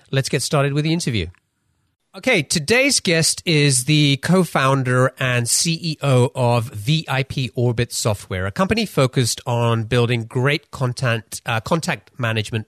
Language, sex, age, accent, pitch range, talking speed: English, male, 30-49, British, 115-150 Hz, 135 wpm